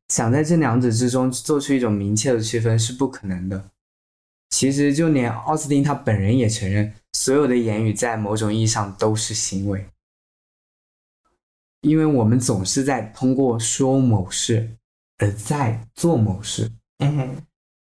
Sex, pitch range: male, 105-125 Hz